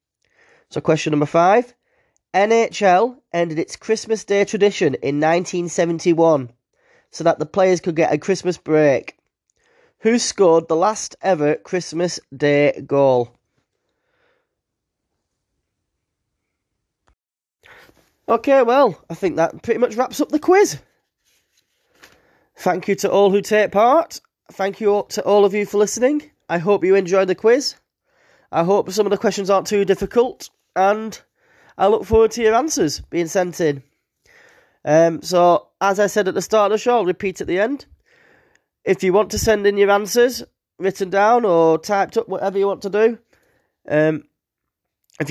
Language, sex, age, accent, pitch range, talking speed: English, male, 20-39, British, 165-225 Hz, 155 wpm